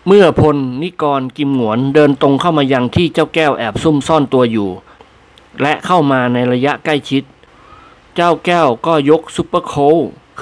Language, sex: Thai, male